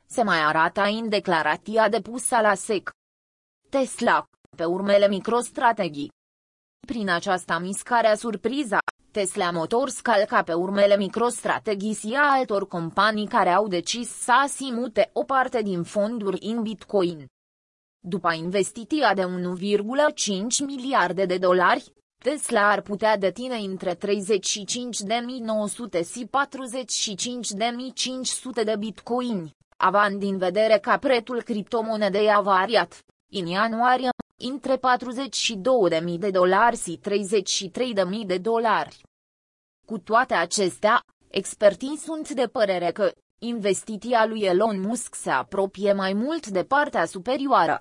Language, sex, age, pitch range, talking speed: Romanian, female, 20-39, 190-240 Hz, 120 wpm